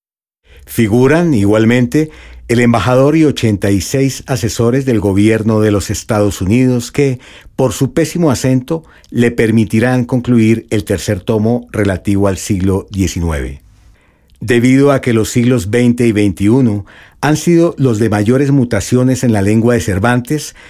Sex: male